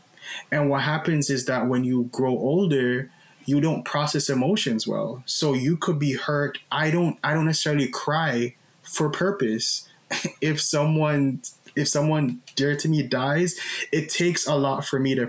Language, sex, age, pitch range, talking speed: English, male, 20-39, 130-150 Hz, 165 wpm